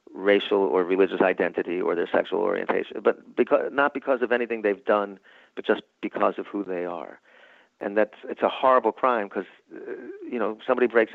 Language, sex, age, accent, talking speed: English, male, 40-59, American, 185 wpm